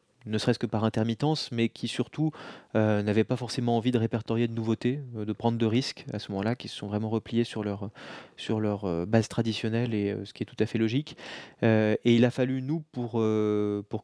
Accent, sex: French, male